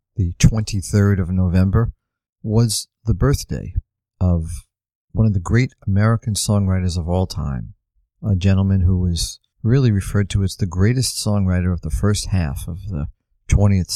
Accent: American